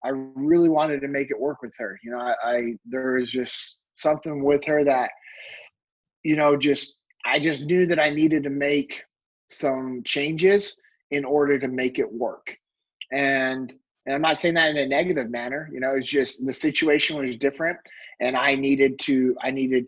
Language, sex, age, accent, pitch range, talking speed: English, male, 30-49, American, 135-155 Hz, 190 wpm